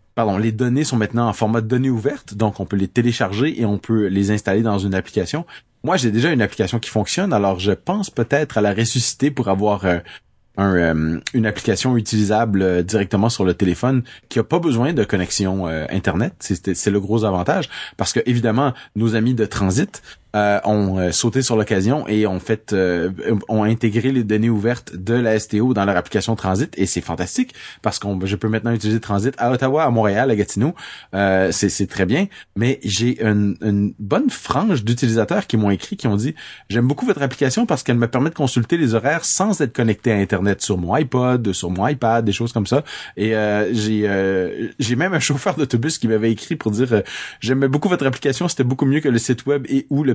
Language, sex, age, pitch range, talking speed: French, male, 30-49, 100-125 Hz, 215 wpm